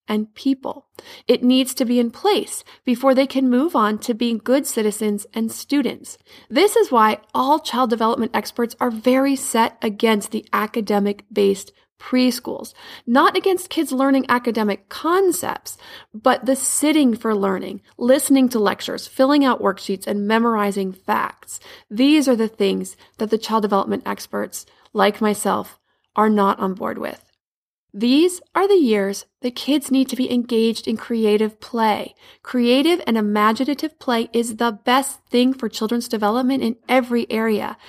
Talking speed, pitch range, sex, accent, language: 150 wpm, 220-270 Hz, female, American, English